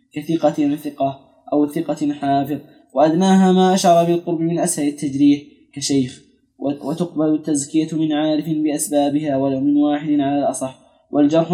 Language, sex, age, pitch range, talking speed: Arabic, male, 10-29, 140-190 Hz, 125 wpm